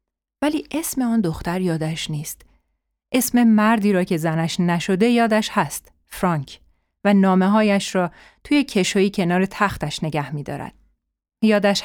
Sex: female